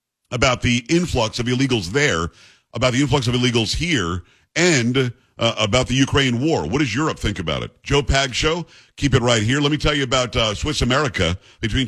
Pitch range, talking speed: 115-140 Hz, 200 wpm